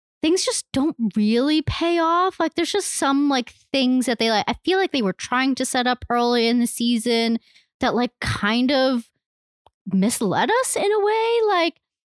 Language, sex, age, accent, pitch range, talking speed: English, female, 20-39, American, 210-320 Hz, 190 wpm